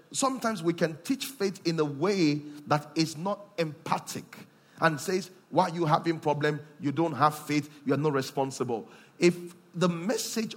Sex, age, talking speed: male, 40-59, 170 wpm